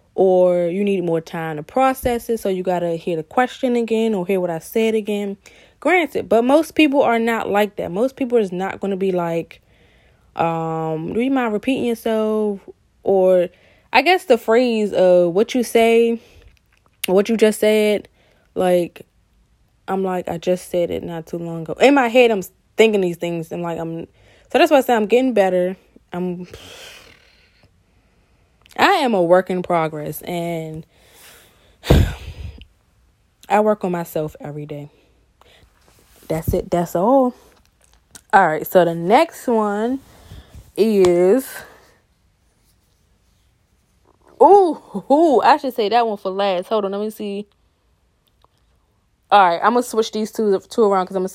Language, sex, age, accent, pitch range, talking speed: English, female, 20-39, American, 175-240 Hz, 160 wpm